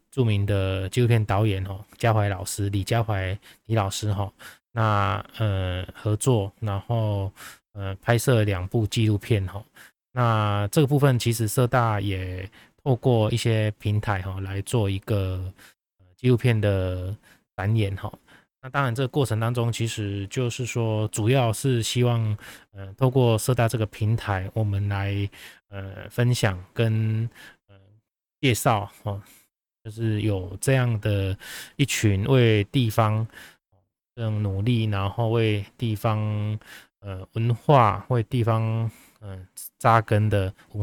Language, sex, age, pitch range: Chinese, male, 20-39, 100-115 Hz